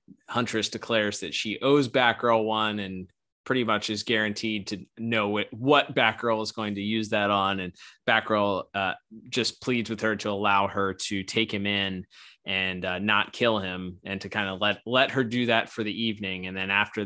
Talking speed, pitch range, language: 195 wpm, 100-125 Hz, English